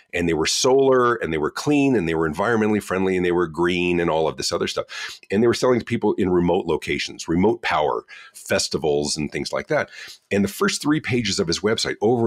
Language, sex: English, male